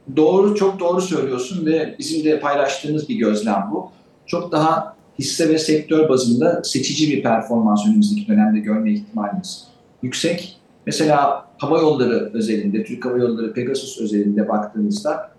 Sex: male